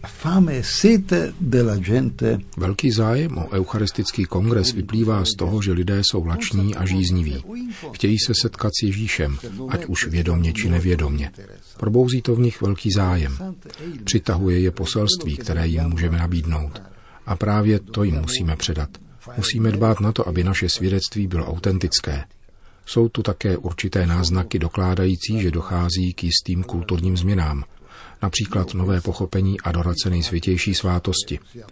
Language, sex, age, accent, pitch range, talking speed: Czech, male, 50-69, native, 90-110 Hz, 130 wpm